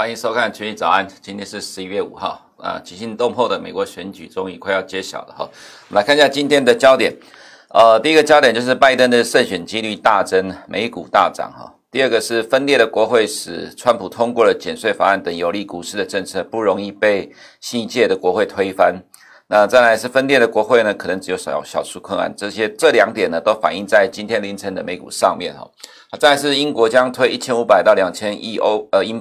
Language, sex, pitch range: Chinese, male, 100-135 Hz